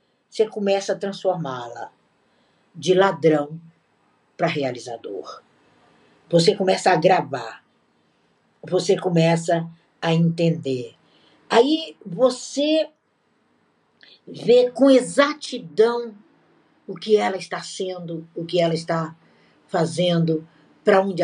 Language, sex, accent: Portuguese, female, Brazilian